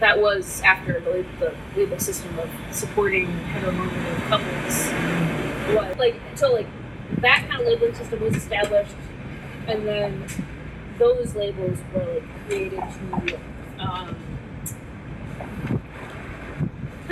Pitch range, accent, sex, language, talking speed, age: 170-220 Hz, American, female, English, 115 wpm, 20-39